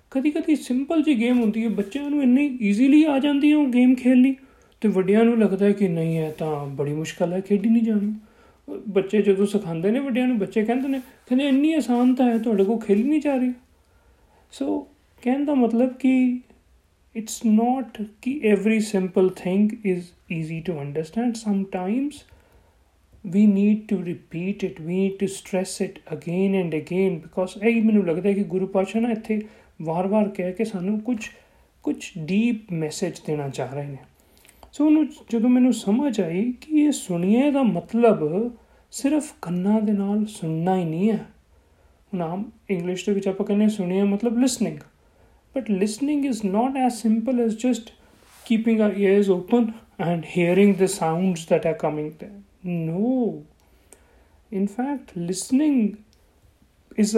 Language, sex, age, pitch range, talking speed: Punjabi, male, 40-59, 185-245 Hz, 160 wpm